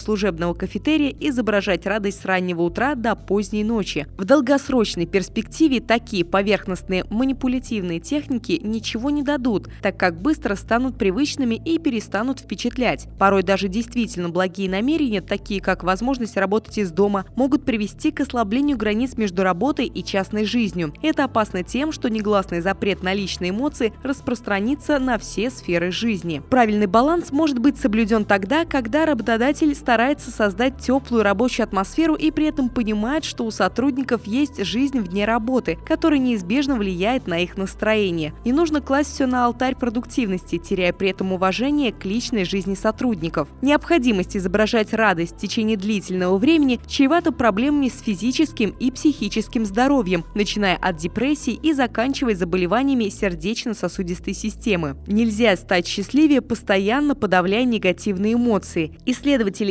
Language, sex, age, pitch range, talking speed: Russian, female, 20-39, 195-265 Hz, 140 wpm